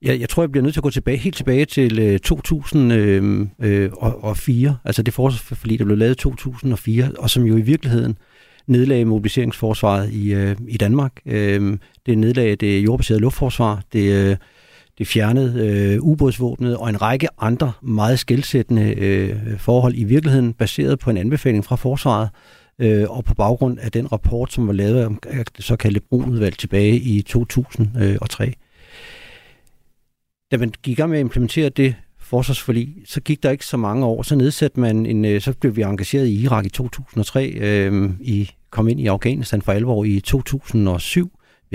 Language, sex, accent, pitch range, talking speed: Danish, male, native, 105-130 Hz, 170 wpm